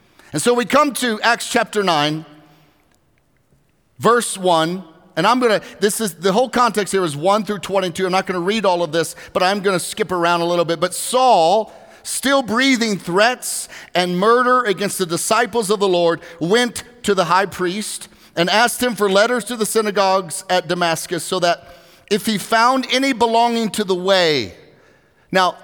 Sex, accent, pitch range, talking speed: male, American, 180-220 Hz, 180 wpm